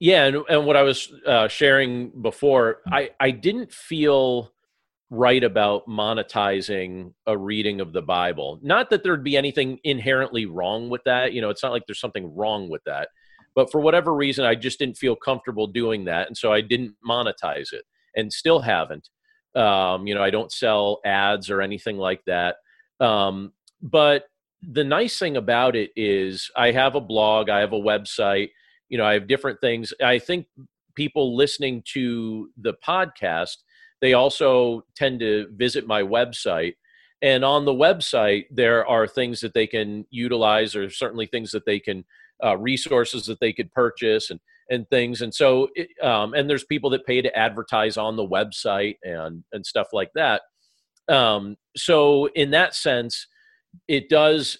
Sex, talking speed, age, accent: male, 175 wpm, 40-59, American